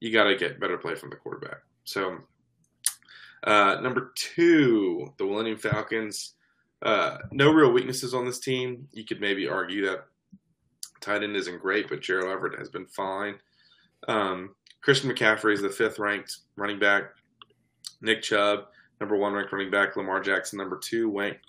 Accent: American